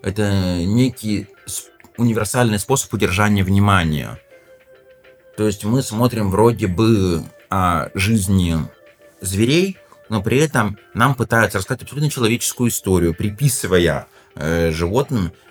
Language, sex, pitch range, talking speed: Russian, male, 90-115 Hz, 100 wpm